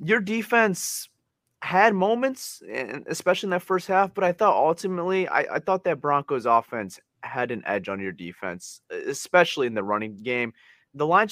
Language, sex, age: English, male, 30-49